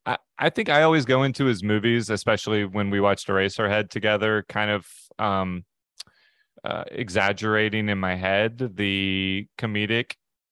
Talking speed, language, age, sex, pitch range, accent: 150 wpm, English, 30-49, male, 100-115 Hz, American